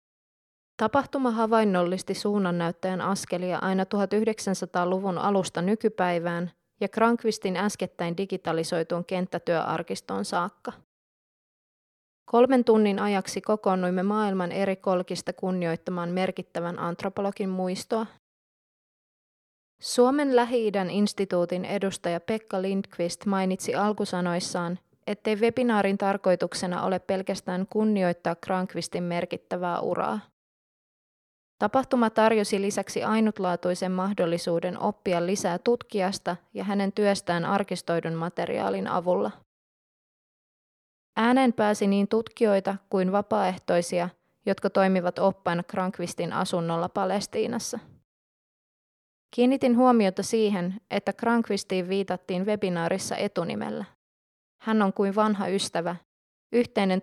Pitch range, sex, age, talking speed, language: 180-210 Hz, female, 20-39, 85 wpm, Finnish